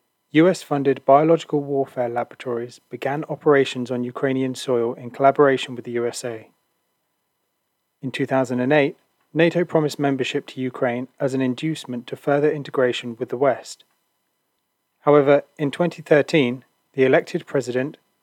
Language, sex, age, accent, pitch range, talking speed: English, male, 30-49, British, 125-150 Hz, 120 wpm